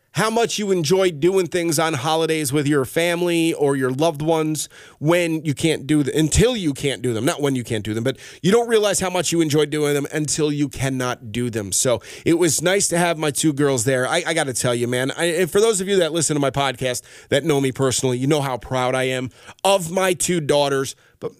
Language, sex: English, male